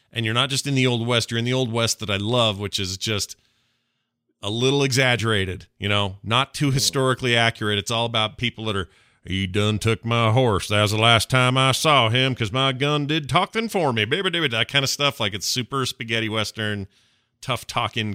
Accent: American